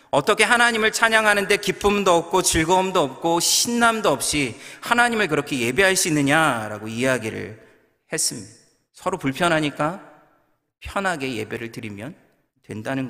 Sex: male